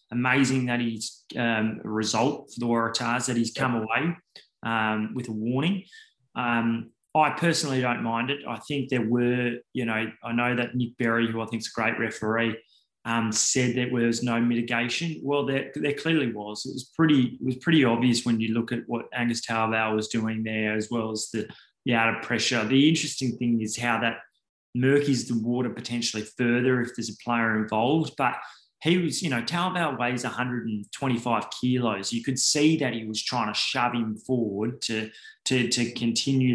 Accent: Australian